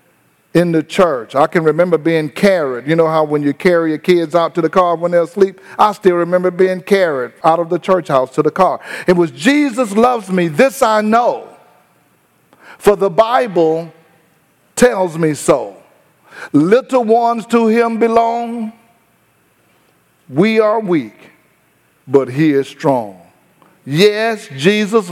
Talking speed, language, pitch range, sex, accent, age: 155 wpm, English, 155-205 Hz, male, American, 50-69